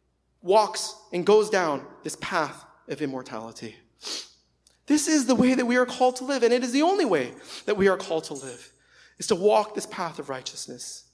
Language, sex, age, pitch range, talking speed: English, male, 30-49, 125-180 Hz, 200 wpm